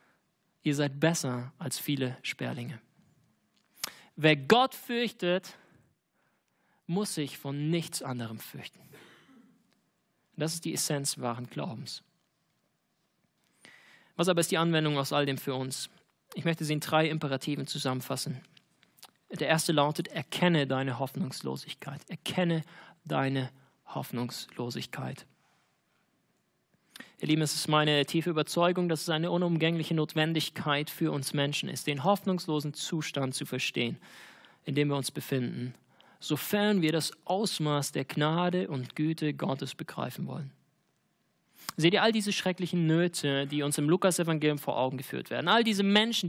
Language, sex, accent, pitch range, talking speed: German, male, German, 145-180 Hz, 130 wpm